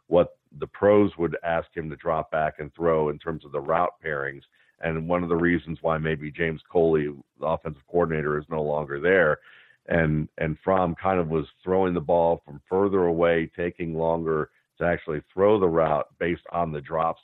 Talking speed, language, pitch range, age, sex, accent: 195 wpm, English, 80-90 Hz, 50-69, male, American